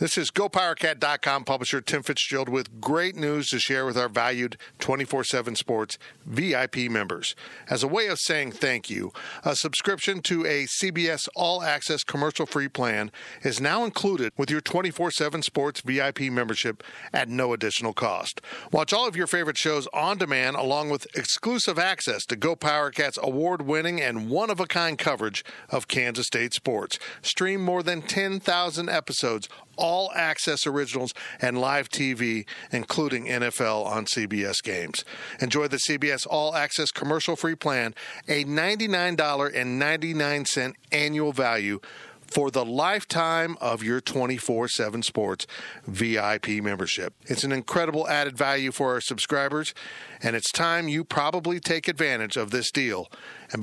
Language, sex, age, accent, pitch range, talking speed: English, male, 50-69, American, 125-165 Hz, 140 wpm